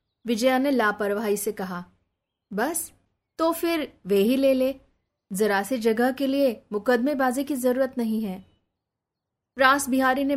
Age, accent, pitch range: 20-39, native, 205-265 Hz